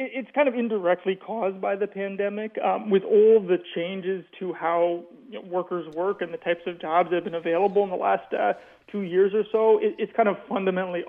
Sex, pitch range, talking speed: male, 180-205 Hz, 205 wpm